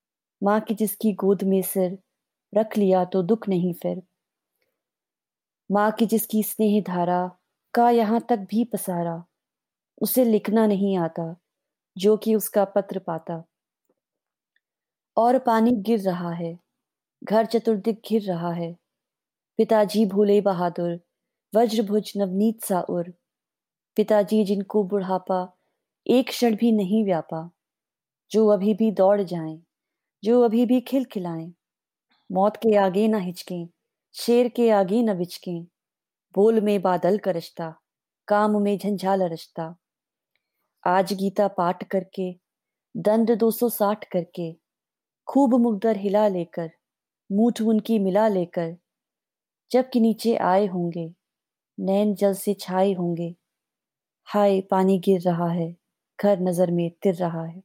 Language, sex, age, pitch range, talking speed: Hindi, female, 20-39, 180-220 Hz, 125 wpm